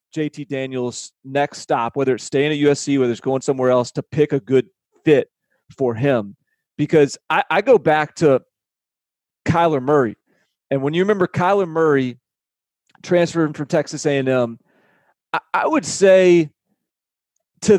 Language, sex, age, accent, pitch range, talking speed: English, male, 30-49, American, 135-165 Hz, 150 wpm